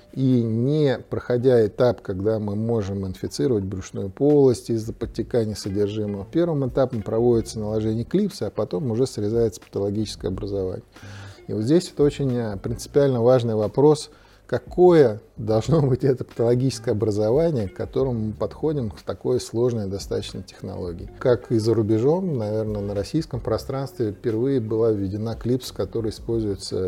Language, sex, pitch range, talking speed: Russian, male, 100-125 Hz, 140 wpm